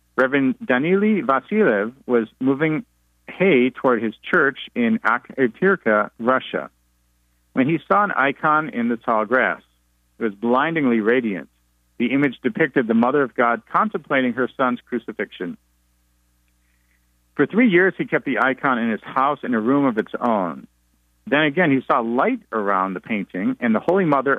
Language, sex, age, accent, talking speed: English, male, 50-69, American, 155 wpm